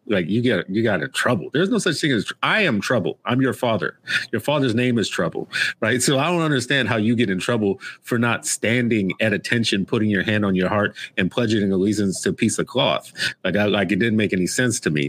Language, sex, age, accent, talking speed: English, male, 40-59, American, 245 wpm